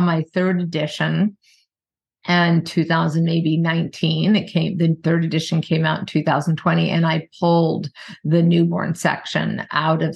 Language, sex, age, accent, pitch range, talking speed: English, female, 50-69, American, 160-185 Hz, 130 wpm